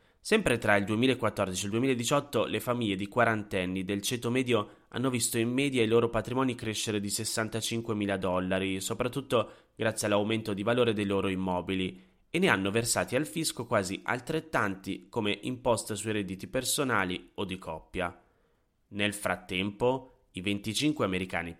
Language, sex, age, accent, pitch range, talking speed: Italian, male, 20-39, native, 95-120 Hz, 155 wpm